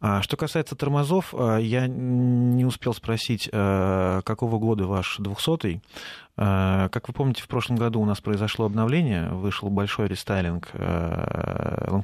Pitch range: 95-120 Hz